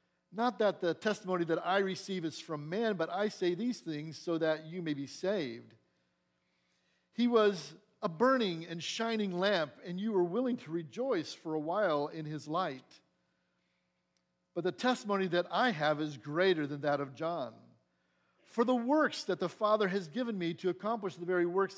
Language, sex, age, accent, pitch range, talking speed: English, male, 50-69, American, 150-205 Hz, 180 wpm